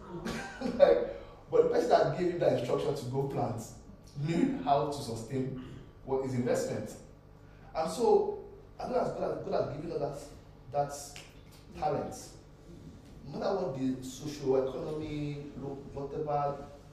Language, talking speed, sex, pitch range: English, 140 wpm, male, 115-145 Hz